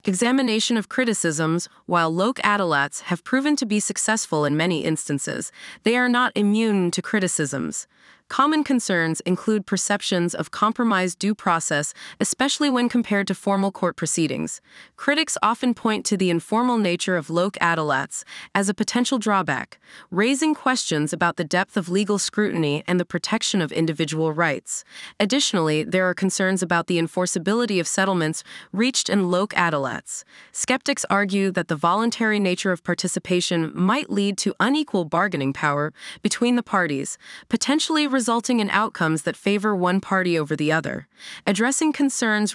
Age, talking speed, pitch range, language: 30-49, 150 wpm, 170-225 Hz, English